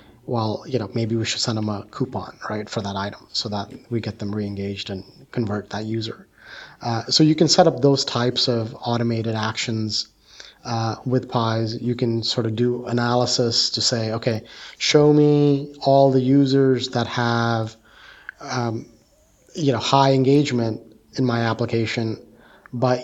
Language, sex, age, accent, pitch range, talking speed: English, male, 30-49, American, 115-130 Hz, 165 wpm